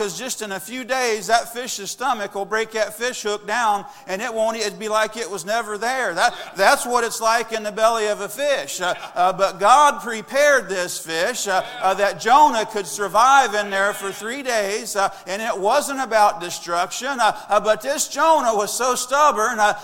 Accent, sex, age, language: American, male, 50-69, English